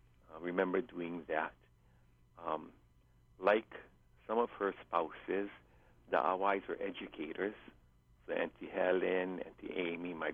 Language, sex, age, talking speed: English, male, 60-79, 115 wpm